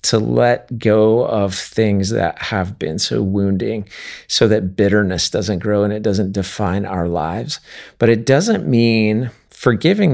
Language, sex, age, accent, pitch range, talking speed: English, male, 40-59, American, 95-115 Hz, 155 wpm